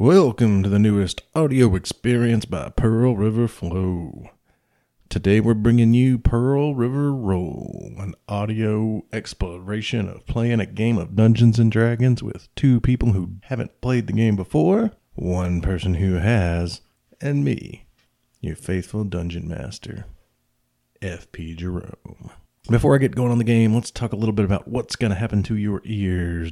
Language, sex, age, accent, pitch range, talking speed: English, male, 40-59, American, 90-115 Hz, 155 wpm